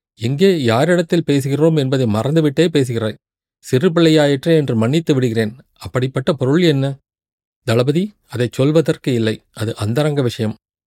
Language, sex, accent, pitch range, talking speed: Tamil, male, native, 120-155 Hz, 110 wpm